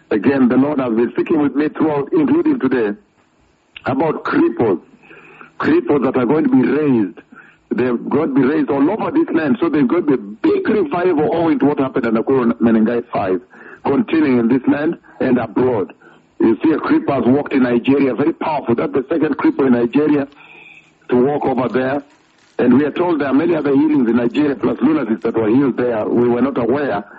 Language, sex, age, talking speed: English, male, 60-79, 210 wpm